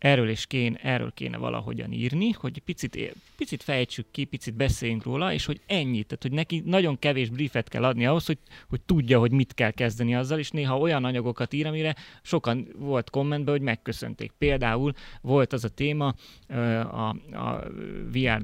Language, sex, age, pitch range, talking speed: Hungarian, male, 20-39, 115-145 Hz, 175 wpm